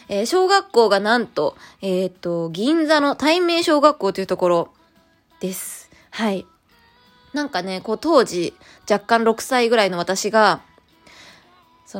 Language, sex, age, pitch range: Japanese, female, 20-39, 185-250 Hz